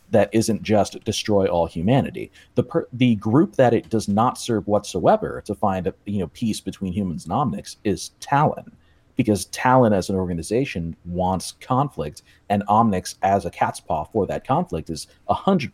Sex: male